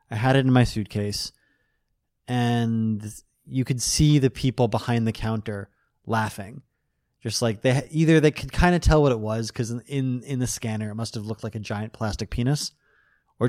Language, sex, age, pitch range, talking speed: French, male, 20-39, 110-130 Hz, 195 wpm